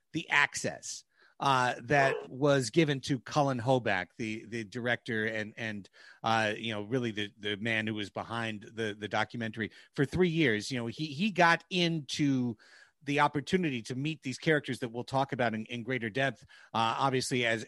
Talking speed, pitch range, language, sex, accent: 180 wpm, 125-165 Hz, English, male, American